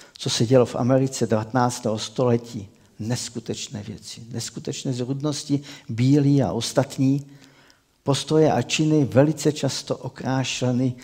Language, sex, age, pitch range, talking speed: Czech, male, 60-79, 120-145 Hz, 110 wpm